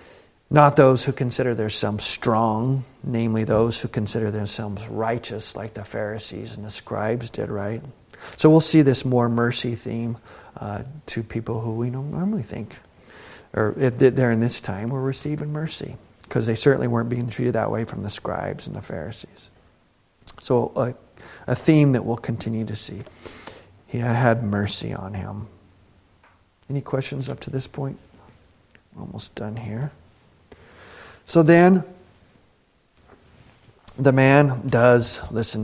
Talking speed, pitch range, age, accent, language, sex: 145 wpm, 110-135 Hz, 40-59, American, English, male